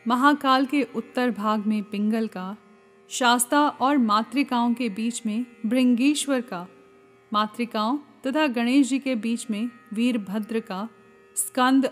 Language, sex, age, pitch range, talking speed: Hindi, female, 40-59, 215-255 Hz, 125 wpm